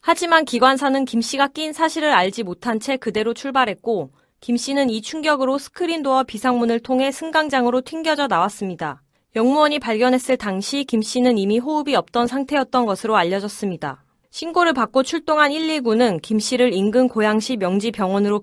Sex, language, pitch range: female, Korean, 205-275 Hz